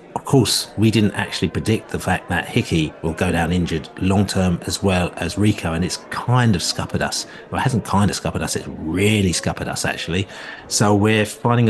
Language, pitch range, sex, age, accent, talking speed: English, 95-110 Hz, male, 40-59, British, 210 wpm